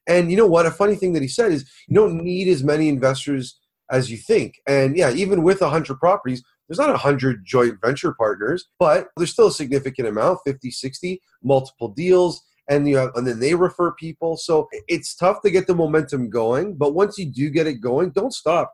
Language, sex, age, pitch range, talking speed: English, male, 30-49, 130-165 Hz, 210 wpm